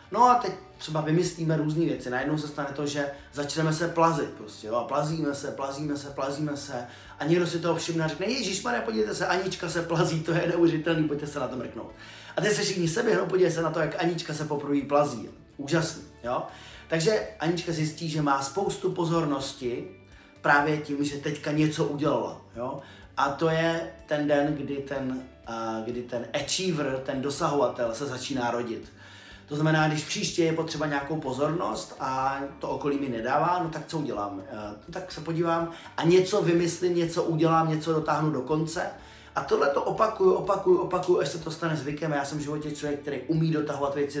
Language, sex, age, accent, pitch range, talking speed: Czech, male, 30-49, native, 140-170 Hz, 190 wpm